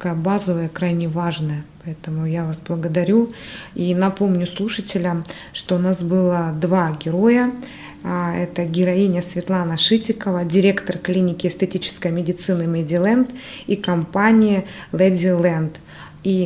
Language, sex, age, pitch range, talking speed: Russian, female, 20-39, 175-200 Hz, 105 wpm